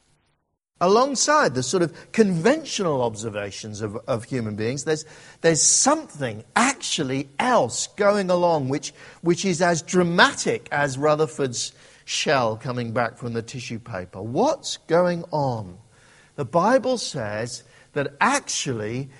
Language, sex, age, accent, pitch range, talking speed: English, male, 50-69, British, 125-185 Hz, 120 wpm